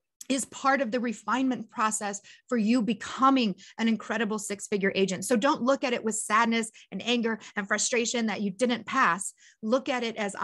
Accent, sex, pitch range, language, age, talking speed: American, female, 215-250 Hz, English, 30-49, 185 wpm